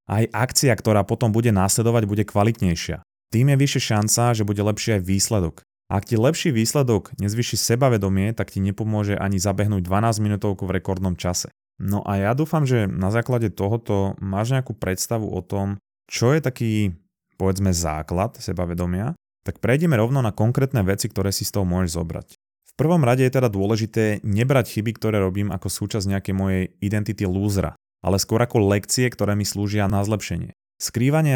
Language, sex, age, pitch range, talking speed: Slovak, male, 20-39, 95-115 Hz, 175 wpm